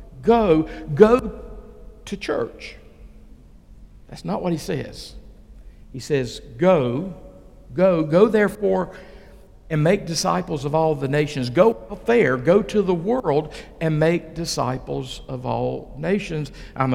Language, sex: English, male